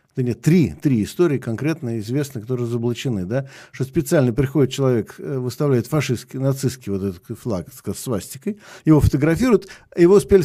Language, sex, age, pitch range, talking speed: Russian, male, 50-69, 130-175 Hz, 150 wpm